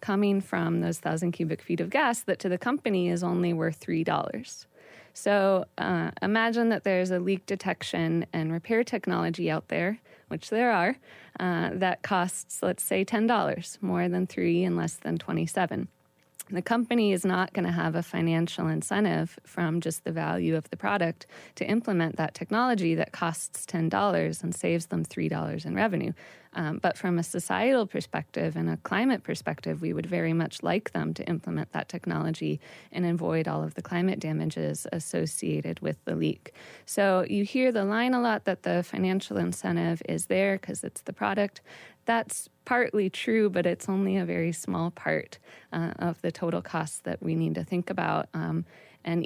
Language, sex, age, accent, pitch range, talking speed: English, female, 20-39, American, 165-200 Hz, 180 wpm